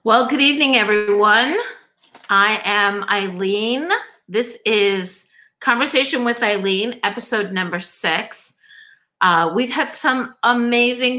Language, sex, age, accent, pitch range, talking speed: English, female, 50-69, American, 180-235 Hz, 105 wpm